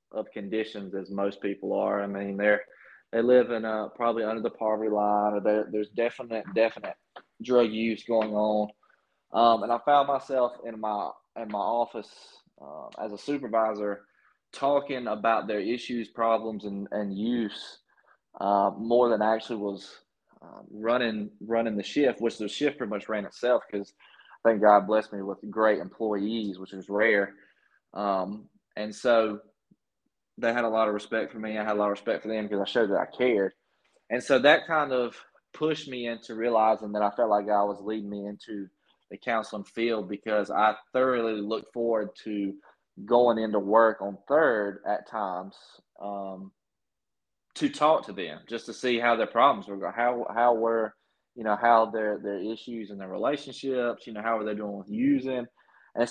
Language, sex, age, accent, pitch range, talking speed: English, male, 20-39, American, 105-115 Hz, 180 wpm